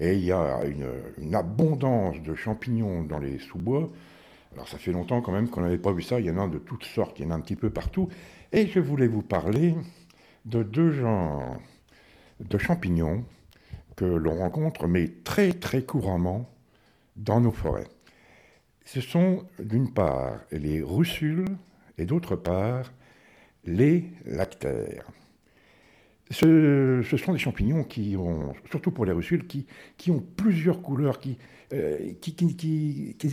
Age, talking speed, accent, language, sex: 60-79, 165 wpm, French, French, male